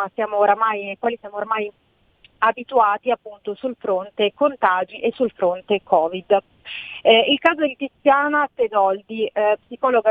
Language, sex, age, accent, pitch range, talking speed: Italian, female, 30-49, native, 205-250 Hz, 125 wpm